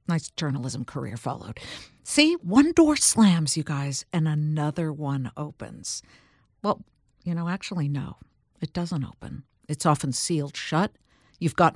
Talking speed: 145 wpm